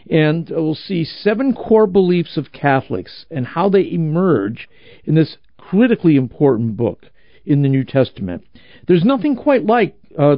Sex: male